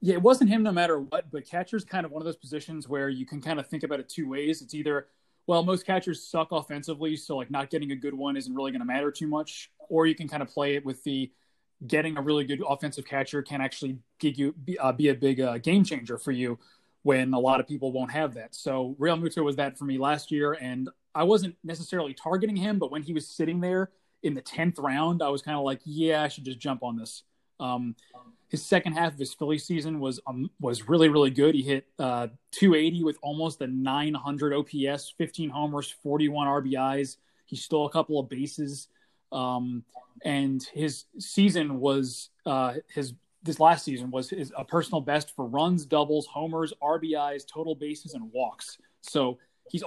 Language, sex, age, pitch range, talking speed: English, male, 30-49, 135-160 Hz, 215 wpm